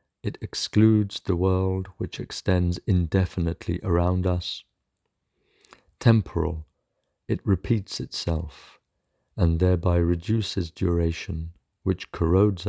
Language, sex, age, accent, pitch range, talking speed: English, male, 50-69, British, 85-100 Hz, 90 wpm